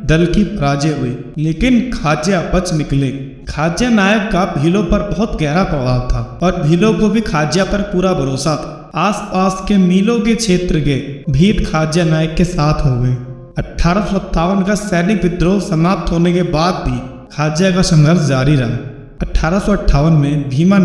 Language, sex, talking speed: Hindi, male, 165 wpm